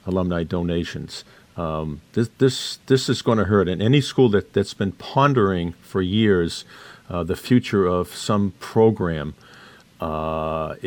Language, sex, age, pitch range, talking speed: English, male, 50-69, 85-105 Hz, 145 wpm